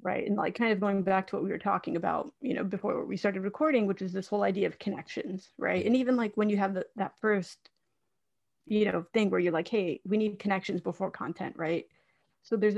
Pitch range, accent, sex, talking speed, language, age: 190-220 Hz, American, female, 235 wpm, English, 30-49